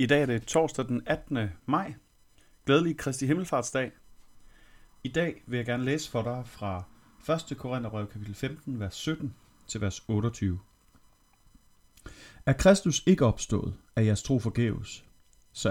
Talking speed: 140 wpm